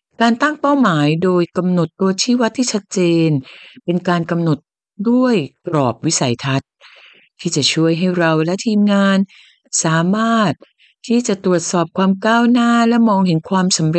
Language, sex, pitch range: Thai, female, 155-220 Hz